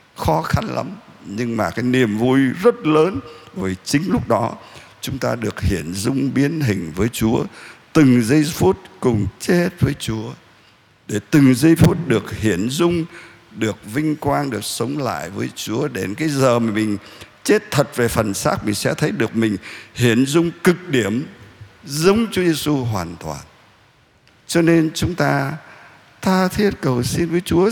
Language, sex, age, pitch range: Vietnamese, male, 60-79, 110-165 Hz